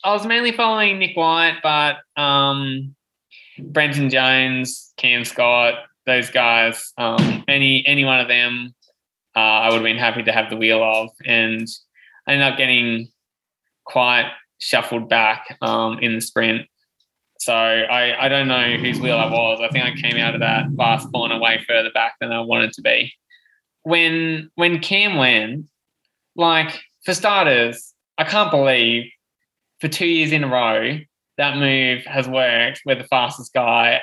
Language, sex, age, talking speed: English, male, 20-39, 165 wpm